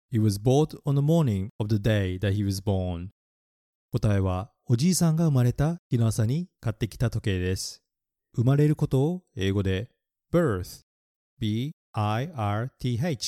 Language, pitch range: Japanese, 100-145 Hz